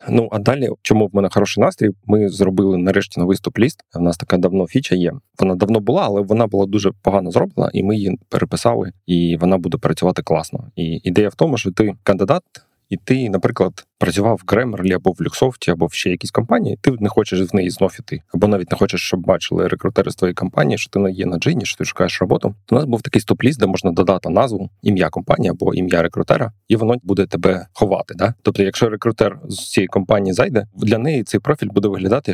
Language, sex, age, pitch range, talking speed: Ukrainian, male, 20-39, 95-110 Hz, 220 wpm